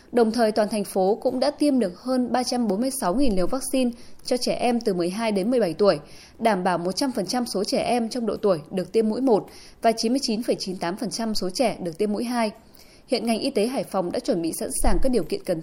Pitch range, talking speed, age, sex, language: 195-255 Hz, 220 wpm, 20-39, female, Vietnamese